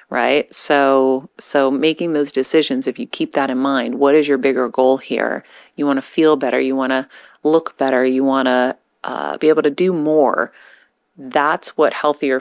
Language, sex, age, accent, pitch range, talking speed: English, female, 30-49, American, 130-155 Hz, 195 wpm